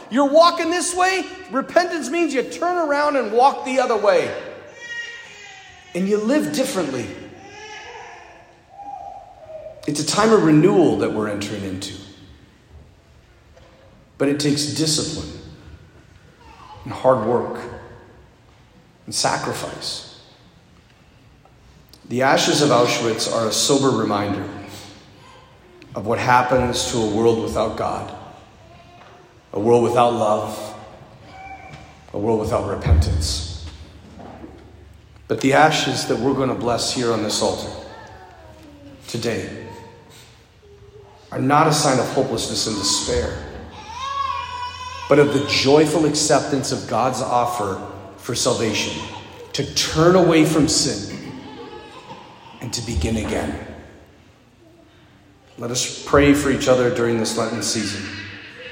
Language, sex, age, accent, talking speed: English, male, 40-59, American, 110 wpm